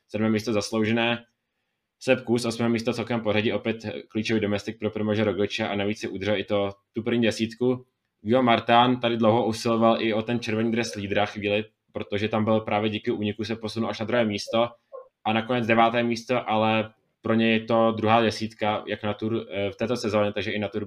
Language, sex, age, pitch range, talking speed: Czech, male, 20-39, 105-115 Hz, 195 wpm